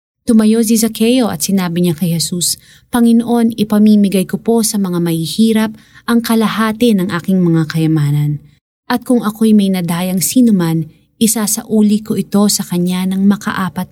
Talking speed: 145 wpm